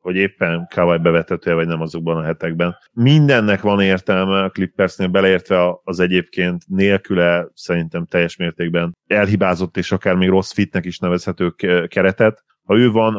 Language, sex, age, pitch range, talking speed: Hungarian, male, 30-49, 85-95 Hz, 150 wpm